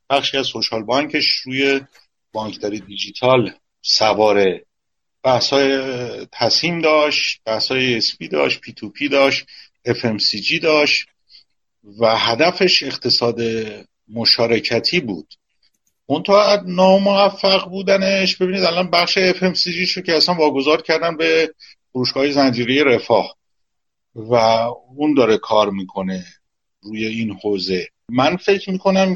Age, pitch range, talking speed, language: 50-69, 110-170 Hz, 110 wpm, Persian